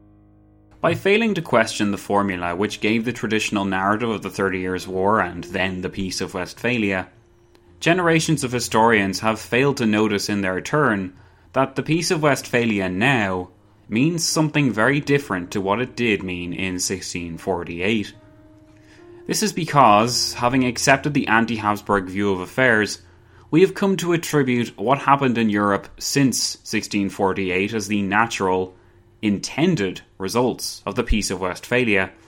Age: 20-39